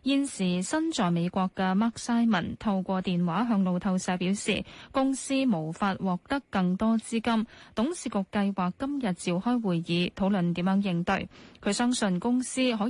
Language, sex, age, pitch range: Chinese, female, 10-29, 175-235 Hz